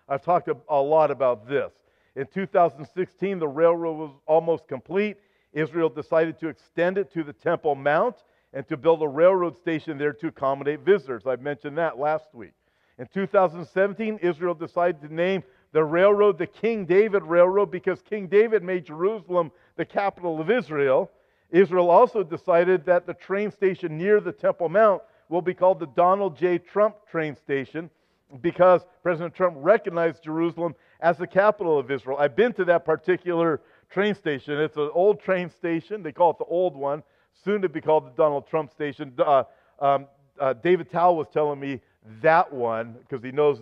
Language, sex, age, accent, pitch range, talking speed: English, male, 50-69, American, 145-180 Hz, 175 wpm